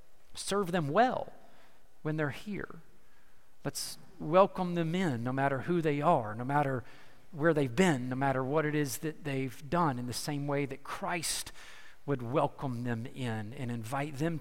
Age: 40-59